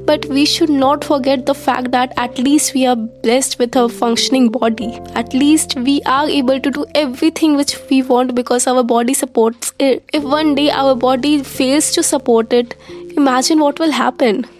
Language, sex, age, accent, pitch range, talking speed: English, female, 10-29, Indian, 235-280 Hz, 190 wpm